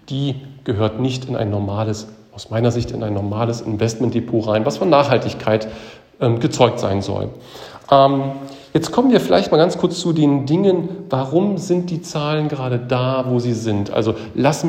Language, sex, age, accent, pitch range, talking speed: German, male, 40-59, German, 115-145 Hz, 170 wpm